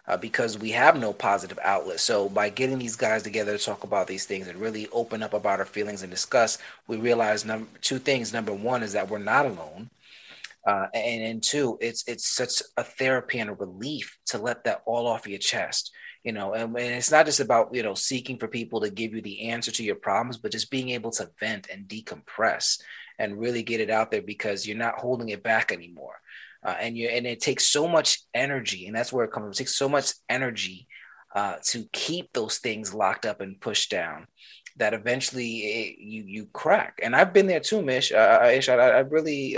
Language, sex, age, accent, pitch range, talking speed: English, male, 30-49, American, 105-125 Hz, 220 wpm